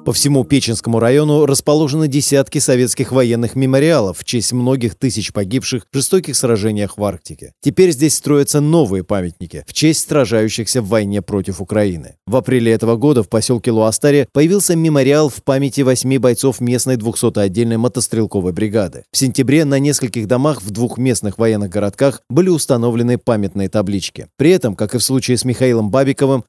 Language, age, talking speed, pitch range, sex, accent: Russian, 30-49, 165 wpm, 110-140 Hz, male, native